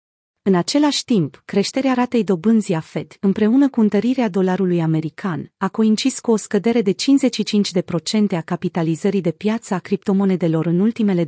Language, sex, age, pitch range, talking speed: Romanian, female, 30-49, 180-220 Hz, 150 wpm